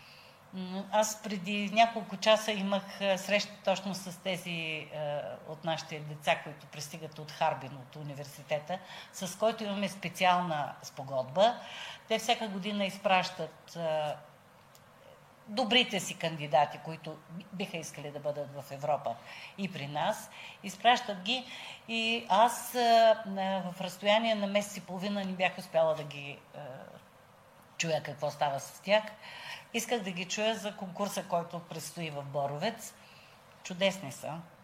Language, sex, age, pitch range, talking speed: Bulgarian, female, 50-69, 155-215 Hz, 135 wpm